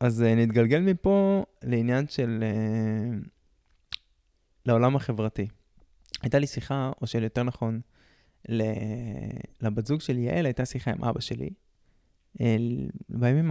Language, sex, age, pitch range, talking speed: Hebrew, male, 20-39, 110-145 Hz, 105 wpm